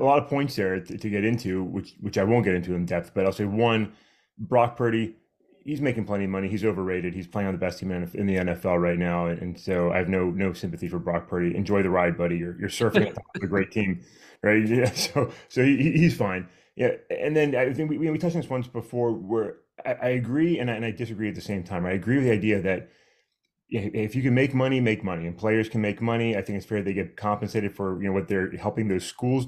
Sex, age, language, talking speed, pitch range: male, 30-49, English, 250 wpm, 95-130 Hz